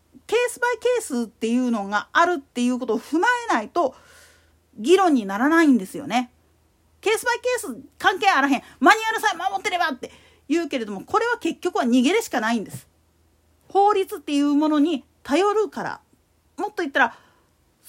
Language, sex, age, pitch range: Japanese, female, 40-59, 255-370 Hz